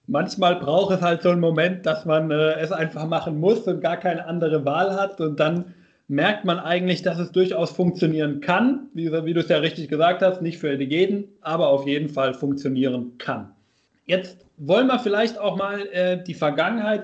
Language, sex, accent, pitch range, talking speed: German, male, German, 160-200 Hz, 195 wpm